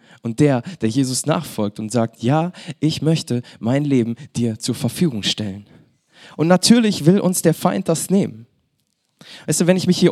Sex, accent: male, German